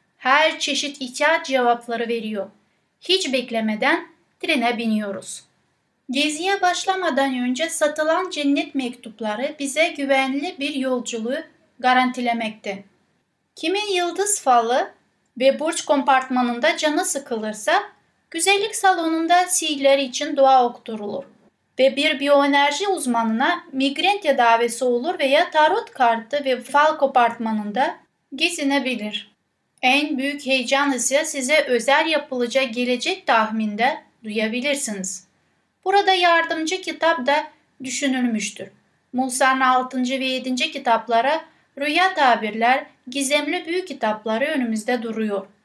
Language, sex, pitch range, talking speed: Turkish, female, 245-310 Hz, 95 wpm